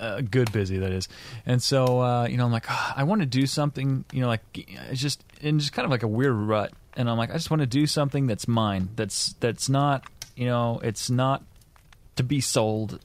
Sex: male